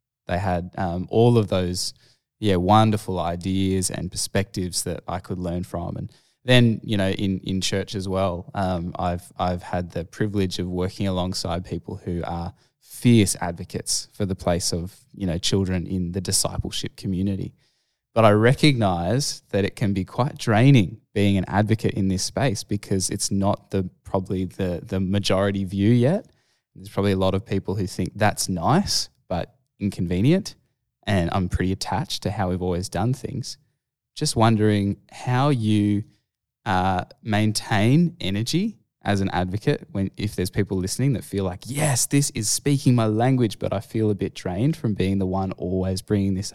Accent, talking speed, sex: Australian, 175 wpm, male